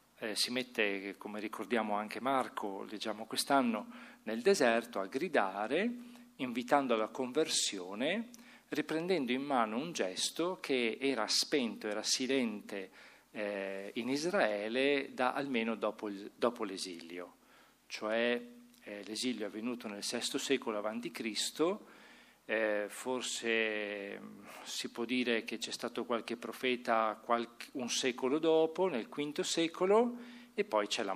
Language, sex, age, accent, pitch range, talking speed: Italian, male, 40-59, native, 105-145 Hz, 125 wpm